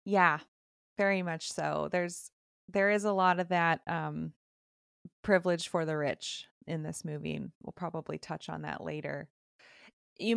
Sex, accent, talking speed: female, American, 160 wpm